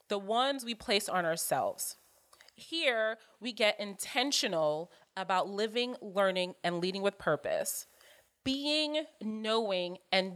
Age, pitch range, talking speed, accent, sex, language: 30-49, 185-250 Hz, 115 wpm, American, female, English